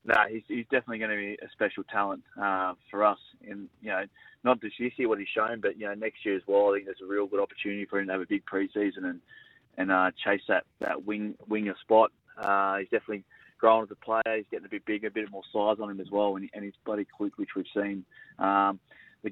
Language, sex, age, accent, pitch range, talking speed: English, male, 20-39, Australian, 100-110 Hz, 255 wpm